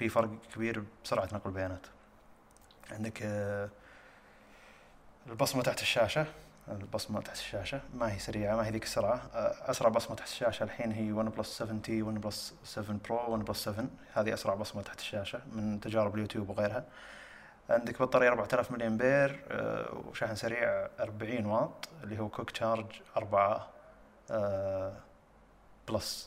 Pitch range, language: 105-115 Hz, Arabic